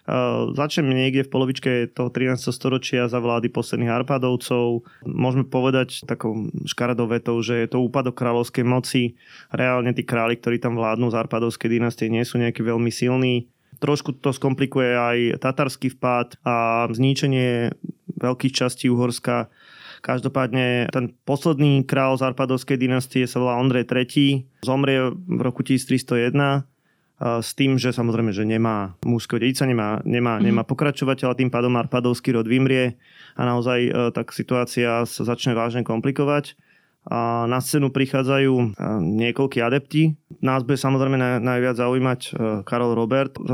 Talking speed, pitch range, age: 140 wpm, 120-135 Hz, 20-39